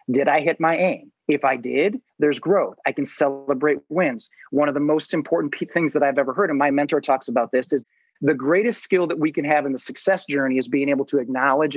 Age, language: 30-49, English